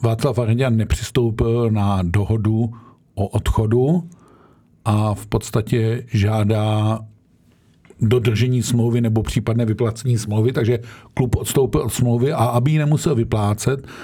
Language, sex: Czech, male